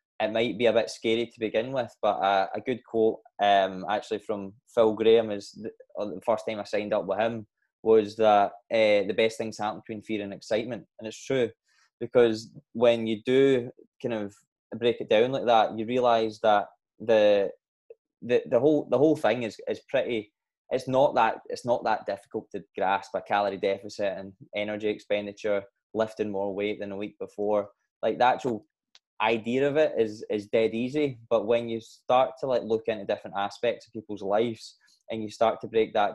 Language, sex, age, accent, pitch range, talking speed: English, male, 10-29, British, 105-125 Hz, 200 wpm